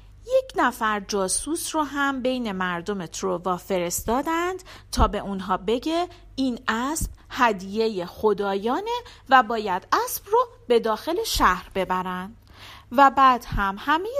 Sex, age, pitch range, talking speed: female, 40-59, 185-305 Hz, 125 wpm